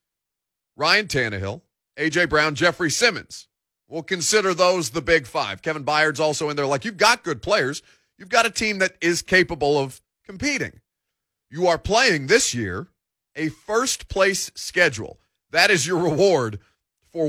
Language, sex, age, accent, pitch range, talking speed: English, male, 30-49, American, 120-175 Hz, 160 wpm